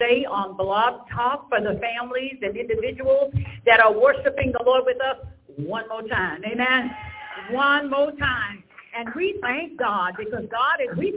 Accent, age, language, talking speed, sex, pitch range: American, 50-69, English, 165 wpm, female, 225-340 Hz